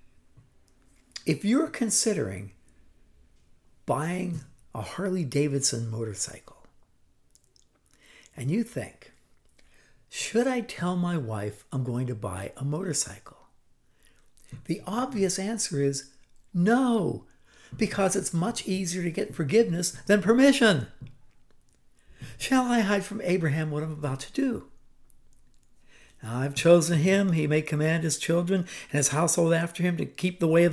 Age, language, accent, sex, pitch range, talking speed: 60-79, English, American, male, 120-185 Hz, 125 wpm